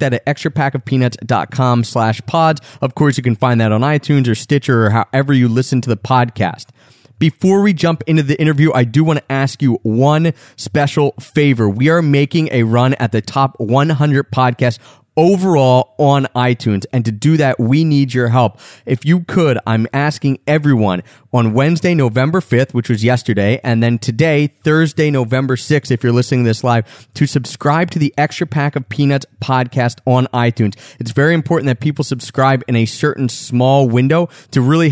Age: 30-49